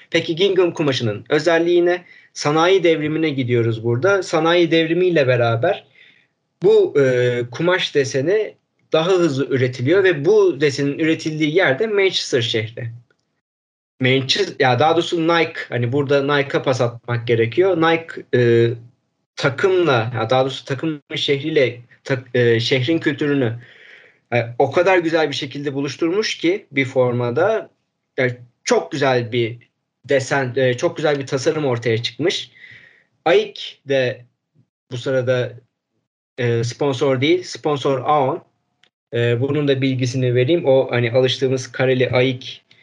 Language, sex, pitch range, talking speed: Turkish, male, 125-165 Hz, 125 wpm